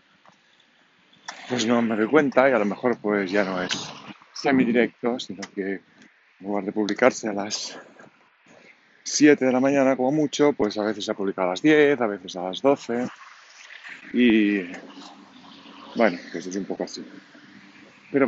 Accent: Spanish